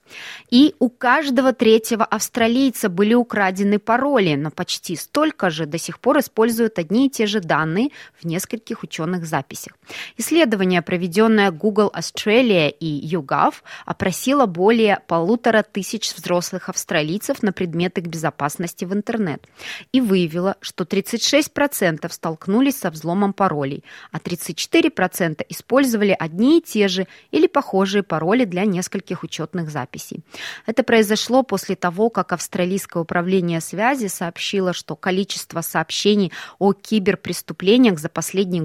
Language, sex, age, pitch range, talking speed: Russian, female, 20-39, 170-225 Hz, 125 wpm